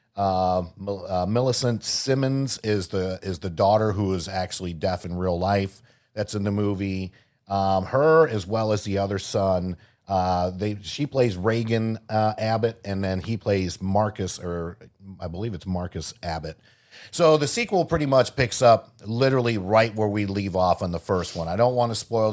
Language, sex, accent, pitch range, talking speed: English, male, American, 95-110 Hz, 185 wpm